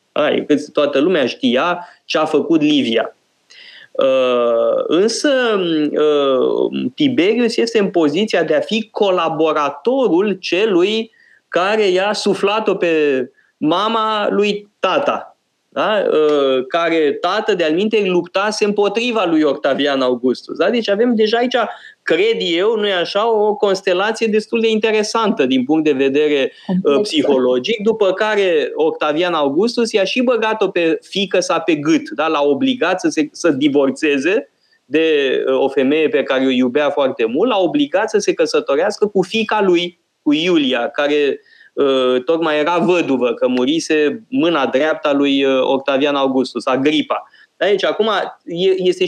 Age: 20-39